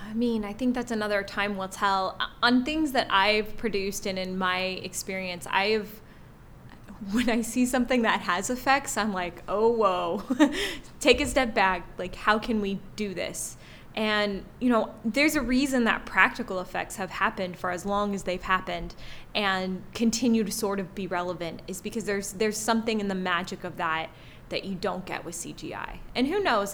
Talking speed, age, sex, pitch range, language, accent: 190 wpm, 20-39, female, 185-220 Hz, English, American